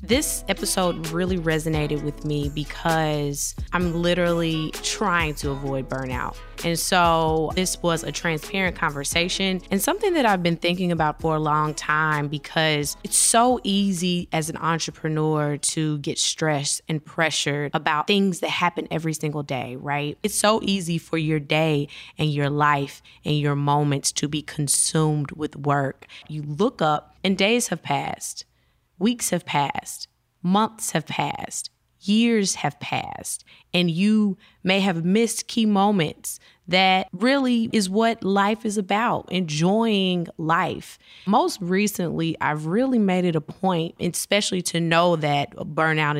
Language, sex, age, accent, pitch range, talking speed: English, female, 20-39, American, 150-195 Hz, 145 wpm